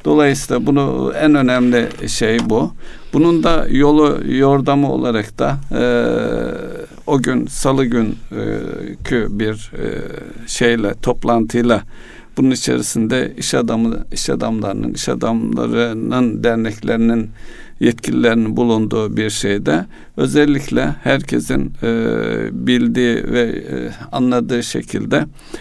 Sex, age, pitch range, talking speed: male, 60-79, 100-135 Hz, 105 wpm